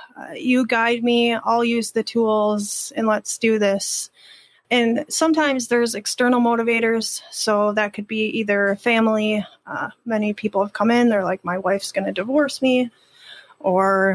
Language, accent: English, American